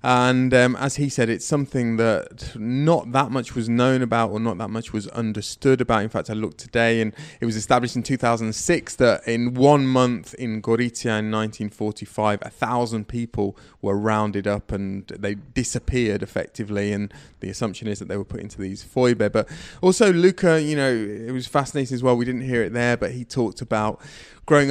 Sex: male